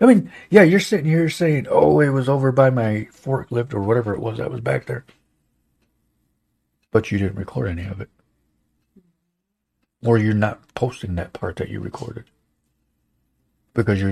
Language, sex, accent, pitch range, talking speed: English, male, American, 105-150 Hz, 170 wpm